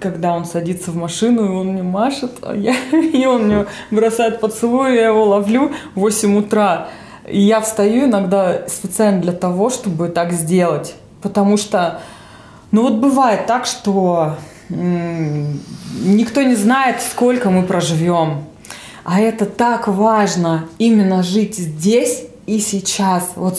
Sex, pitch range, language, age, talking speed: female, 170-215 Hz, Russian, 20-39, 145 wpm